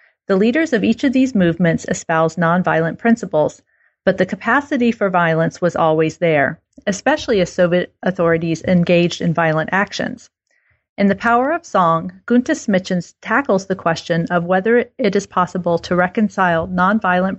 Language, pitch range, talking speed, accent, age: English, 170-205 Hz, 150 wpm, American, 40-59